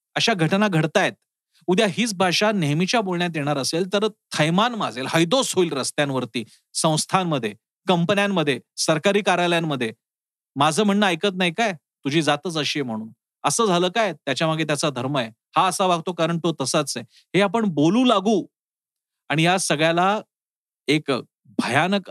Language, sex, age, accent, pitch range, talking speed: Marathi, male, 40-59, native, 150-195 Hz, 145 wpm